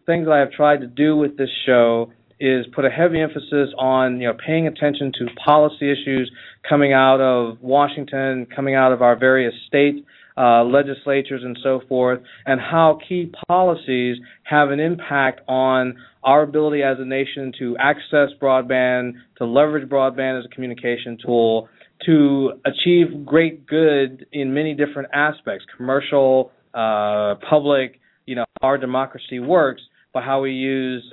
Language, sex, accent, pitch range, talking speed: English, male, American, 125-145 Hz, 155 wpm